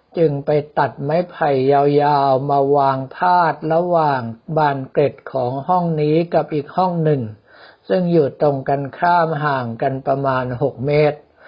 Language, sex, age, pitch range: Thai, male, 60-79, 140-165 Hz